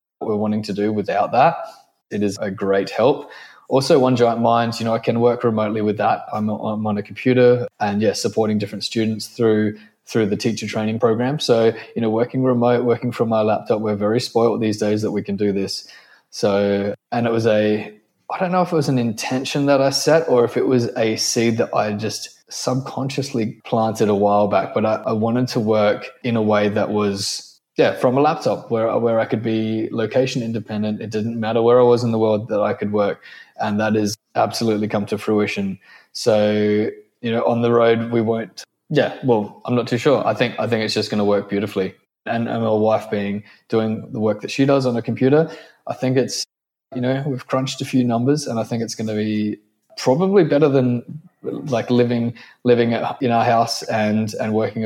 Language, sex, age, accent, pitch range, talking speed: English, male, 20-39, Australian, 105-120 Hz, 215 wpm